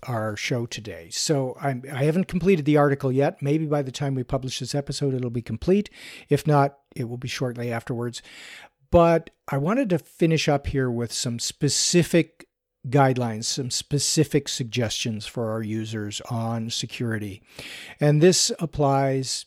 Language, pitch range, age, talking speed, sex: English, 120-155 Hz, 50-69, 155 wpm, male